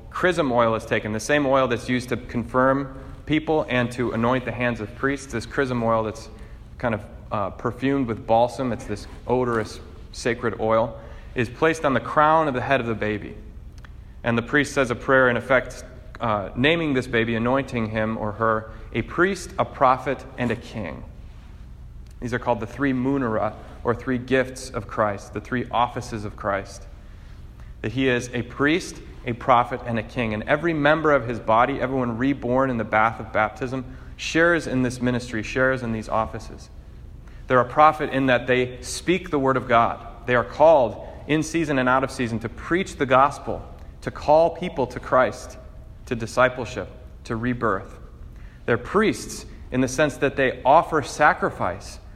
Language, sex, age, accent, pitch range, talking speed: English, male, 30-49, American, 110-135 Hz, 180 wpm